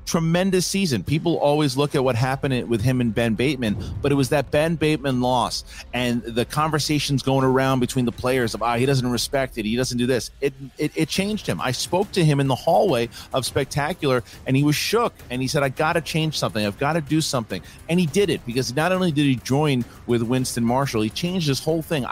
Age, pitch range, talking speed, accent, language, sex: 30-49, 120-165 Hz, 230 wpm, American, English, male